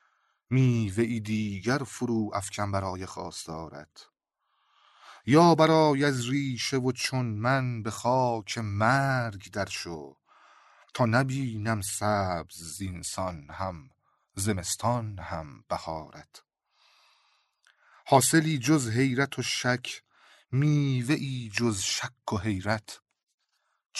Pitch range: 100-130 Hz